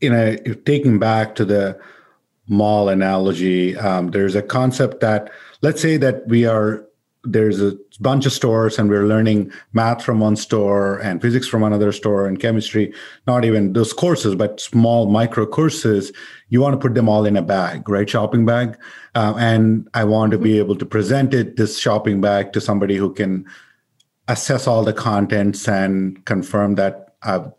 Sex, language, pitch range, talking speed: male, English, 100-120 Hz, 180 wpm